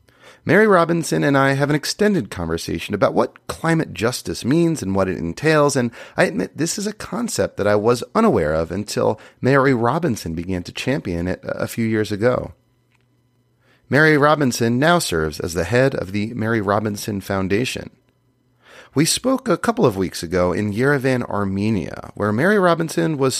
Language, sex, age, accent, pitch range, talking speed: English, male, 30-49, American, 110-150 Hz, 170 wpm